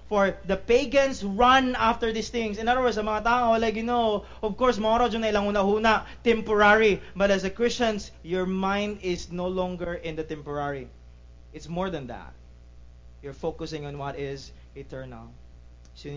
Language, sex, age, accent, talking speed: English, male, 20-39, Filipino, 150 wpm